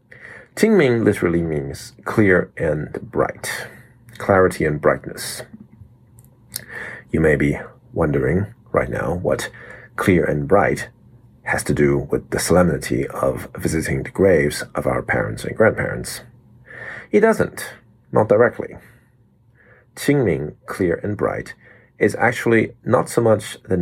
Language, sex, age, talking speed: English, male, 40-59, 120 wpm